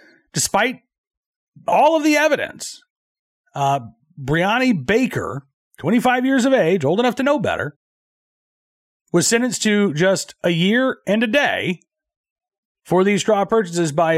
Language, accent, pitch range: English, American, 165-235 Hz